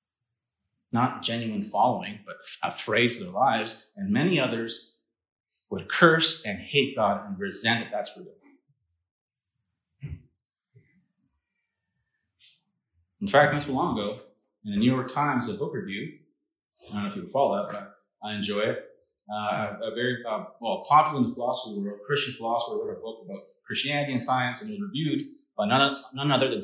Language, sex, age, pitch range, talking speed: English, male, 30-49, 115-160 Hz, 170 wpm